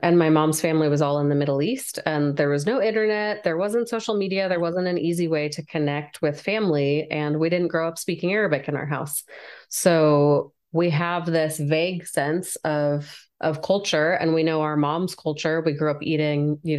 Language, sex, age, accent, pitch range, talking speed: English, female, 30-49, American, 150-175 Hz, 205 wpm